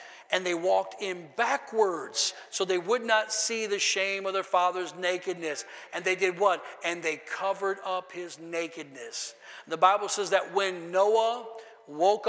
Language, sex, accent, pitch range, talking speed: English, male, American, 180-225 Hz, 160 wpm